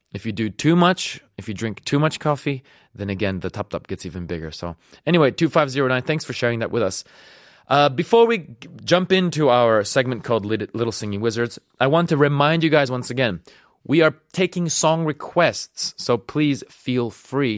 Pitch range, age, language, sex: 110-165 Hz, 30-49, Korean, male